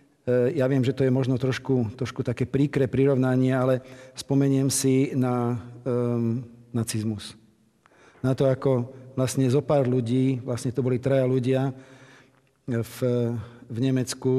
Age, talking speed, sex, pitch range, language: 40-59, 130 wpm, male, 120-135 Hz, Slovak